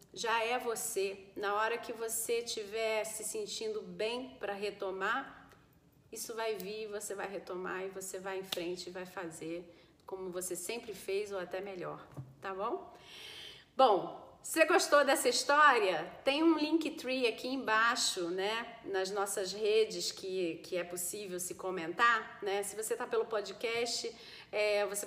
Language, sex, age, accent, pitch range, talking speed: Portuguese, female, 40-59, Brazilian, 185-225 Hz, 155 wpm